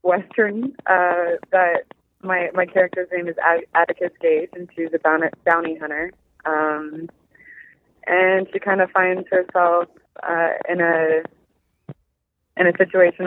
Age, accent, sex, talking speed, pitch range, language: 20-39, American, female, 125 wpm, 155-180 Hz, English